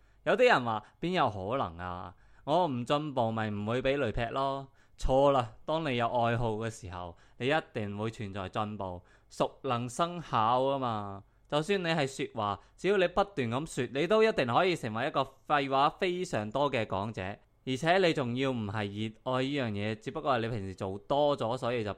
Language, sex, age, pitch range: Chinese, male, 20-39, 105-140 Hz